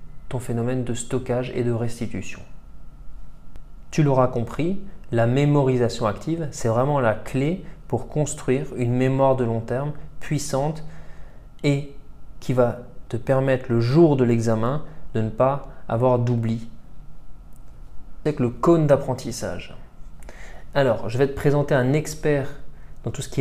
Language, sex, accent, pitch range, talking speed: French, male, French, 120-150 Hz, 140 wpm